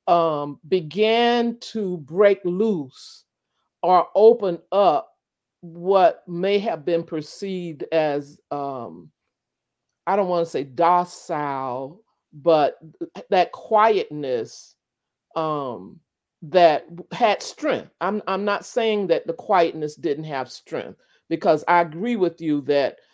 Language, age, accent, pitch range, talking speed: English, 50-69, American, 160-225 Hz, 110 wpm